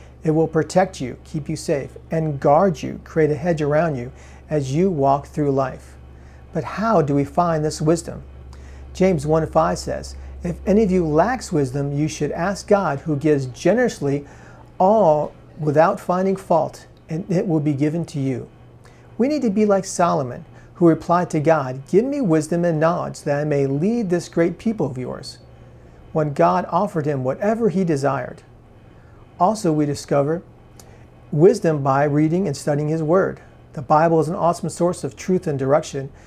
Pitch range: 140-175 Hz